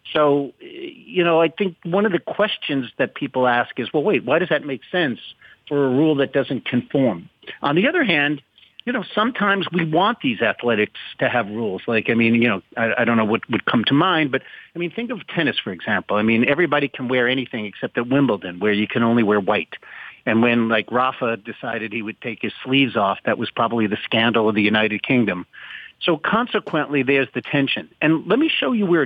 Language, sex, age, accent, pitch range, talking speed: English, male, 50-69, American, 115-145 Hz, 225 wpm